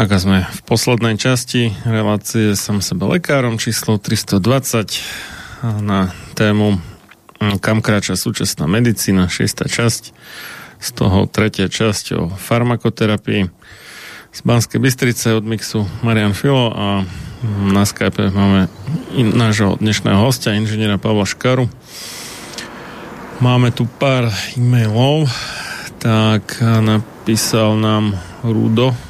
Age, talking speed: 30-49, 105 wpm